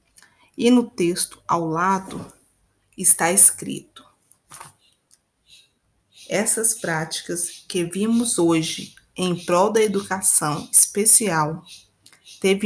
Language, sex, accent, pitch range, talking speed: Portuguese, female, Brazilian, 155-200 Hz, 85 wpm